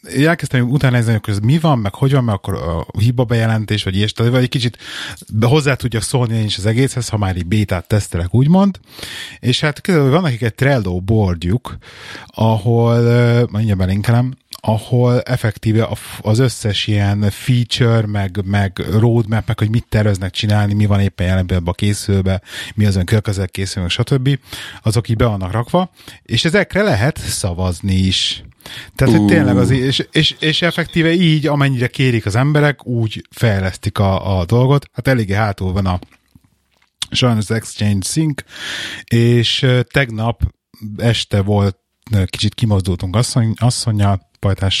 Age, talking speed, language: 30-49, 145 wpm, Hungarian